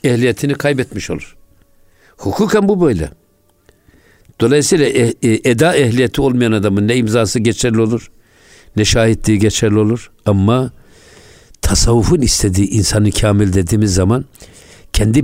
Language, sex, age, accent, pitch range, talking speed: Turkish, male, 60-79, native, 95-120 Hz, 105 wpm